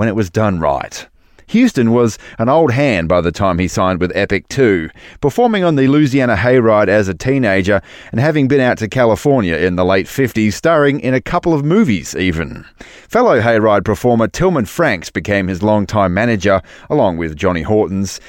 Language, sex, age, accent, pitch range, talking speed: English, male, 30-49, Australian, 95-130 Hz, 185 wpm